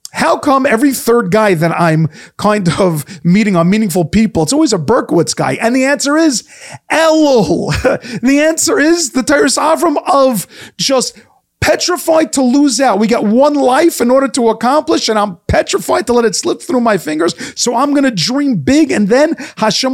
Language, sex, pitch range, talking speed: English, male, 170-270 Hz, 185 wpm